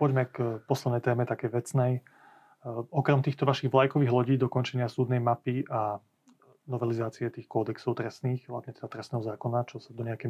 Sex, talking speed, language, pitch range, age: male, 165 wpm, Slovak, 120-140 Hz, 30-49